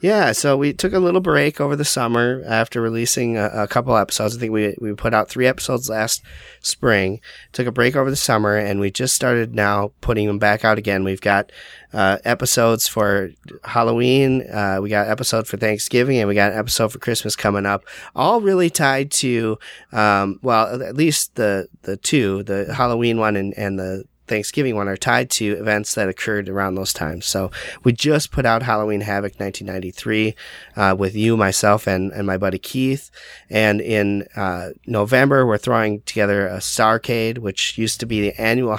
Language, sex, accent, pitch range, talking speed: English, male, American, 100-120 Hz, 190 wpm